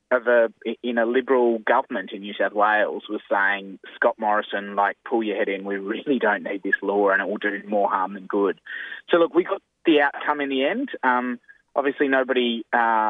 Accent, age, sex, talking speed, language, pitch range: Australian, 20-39, male, 200 wpm, English, 100-120 Hz